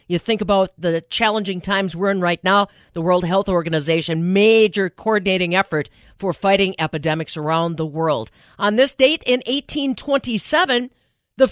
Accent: American